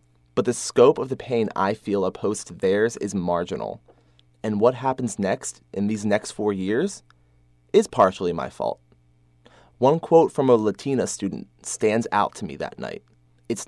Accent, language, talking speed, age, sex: American, English, 170 wpm, 20-39, male